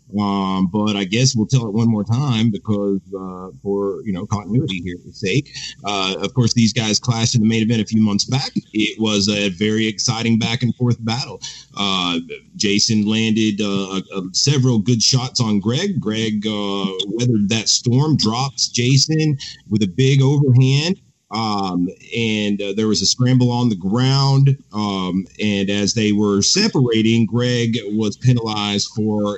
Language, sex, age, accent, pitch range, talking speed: English, male, 40-59, American, 100-115 Hz, 165 wpm